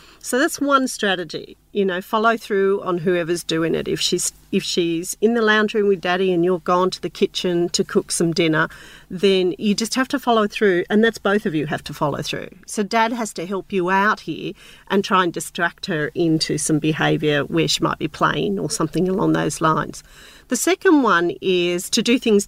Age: 40-59